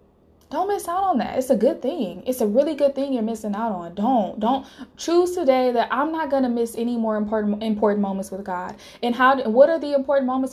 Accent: American